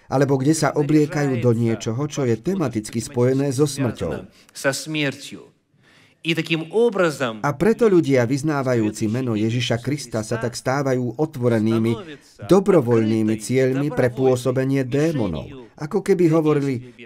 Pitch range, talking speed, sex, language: 115-155 Hz, 110 wpm, male, Slovak